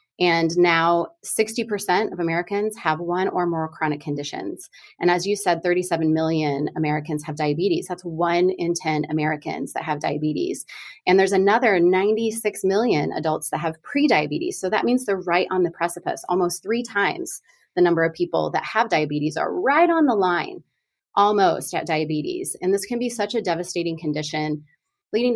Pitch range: 155-190 Hz